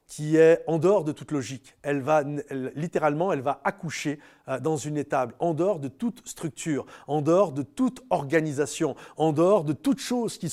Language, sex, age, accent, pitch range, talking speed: French, male, 30-49, French, 155-205 Hz, 190 wpm